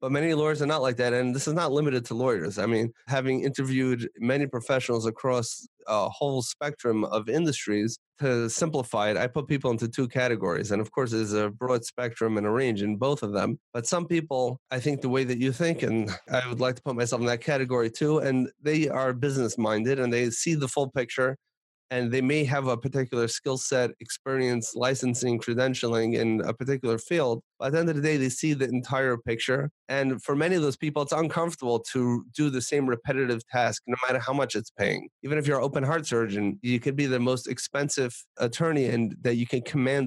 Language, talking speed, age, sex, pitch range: English, 220 wpm, 30-49, male, 120-140 Hz